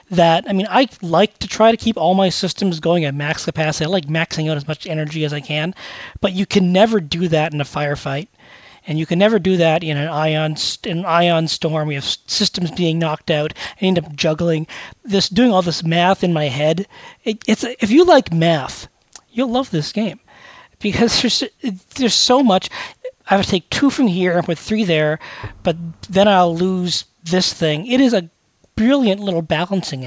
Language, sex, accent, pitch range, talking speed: English, male, American, 160-210 Hz, 205 wpm